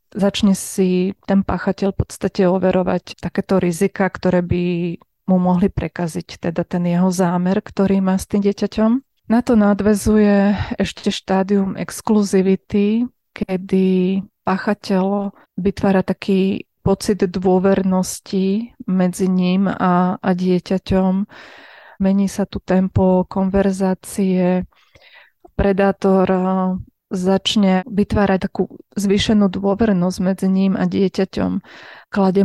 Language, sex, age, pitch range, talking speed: Slovak, female, 20-39, 185-200 Hz, 100 wpm